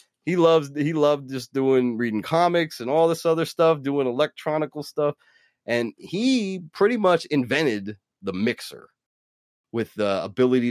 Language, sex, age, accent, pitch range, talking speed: English, male, 30-49, American, 95-140 Hz, 145 wpm